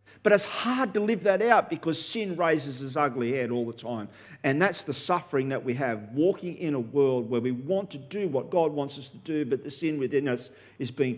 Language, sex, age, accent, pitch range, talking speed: English, male, 50-69, Australian, 100-135 Hz, 240 wpm